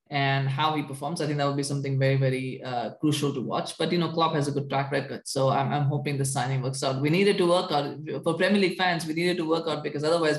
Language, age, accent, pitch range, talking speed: English, 20-39, Indian, 140-165 Hz, 285 wpm